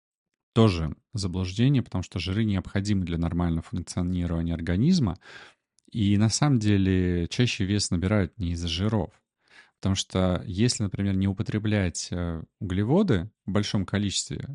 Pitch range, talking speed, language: 90-110 Hz, 125 wpm, Russian